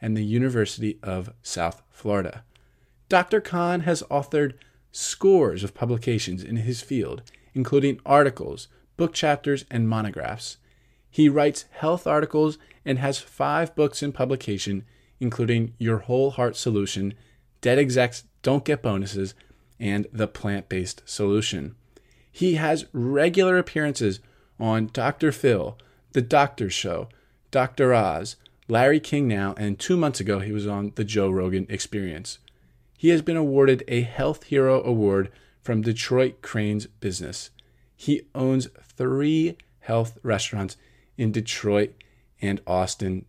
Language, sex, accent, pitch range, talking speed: English, male, American, 105-135 Hz, 130 wpm